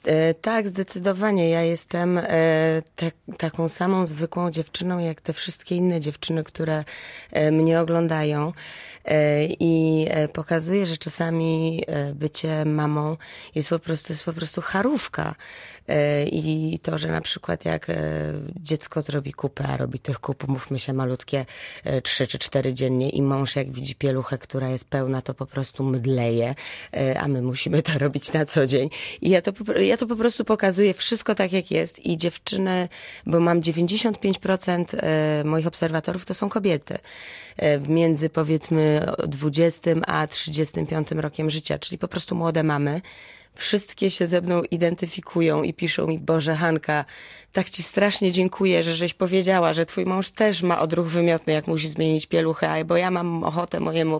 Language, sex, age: Polish, female, 30-49